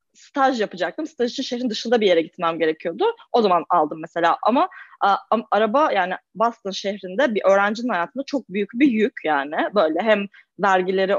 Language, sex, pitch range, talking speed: Turkish, female, 185-240 Hz, 165 wpm